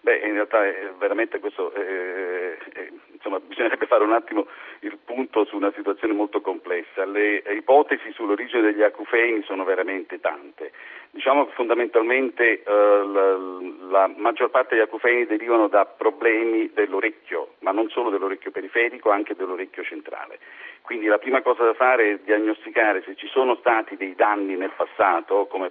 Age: 50-69